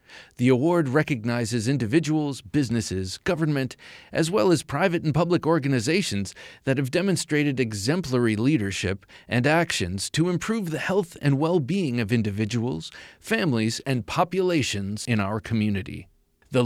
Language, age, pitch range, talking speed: English, 40-59, 115-160 Hz, 125 wpm